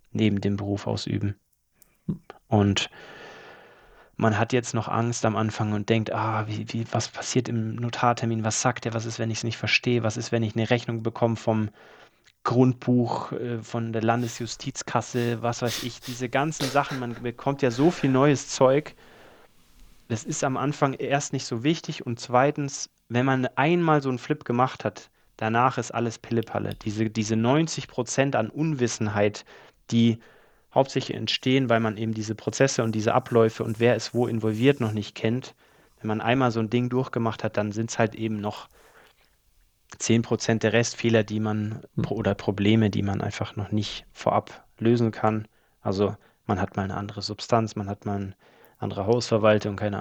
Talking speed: 175 wpm